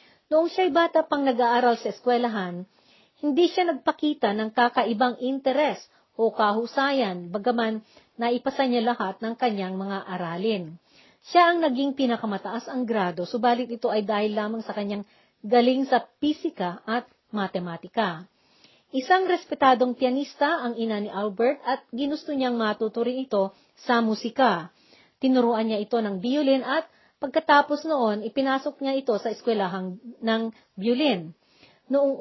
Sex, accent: female, native